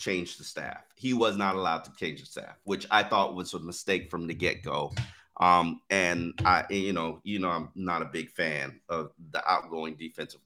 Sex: male